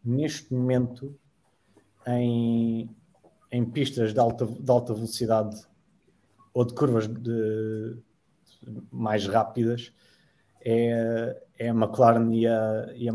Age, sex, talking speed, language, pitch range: 20-39, male, 95 wpm, English, 110-120 Hz